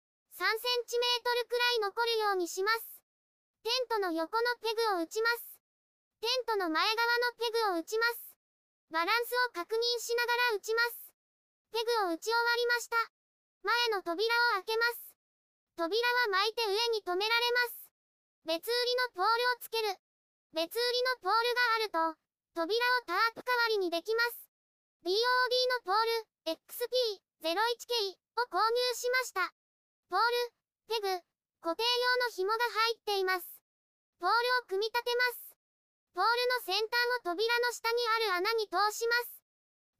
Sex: male